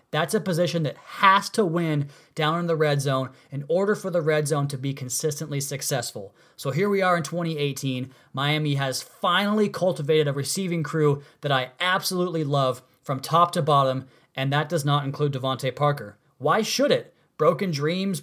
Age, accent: 30-49, American